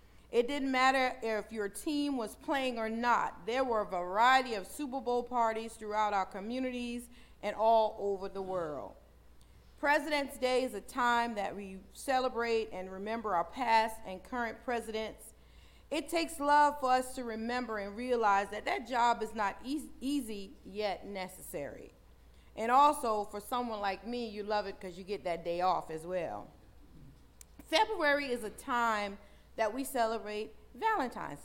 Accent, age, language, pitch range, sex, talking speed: American, 40-59, English, 205-260 Hz, female, 160 wpm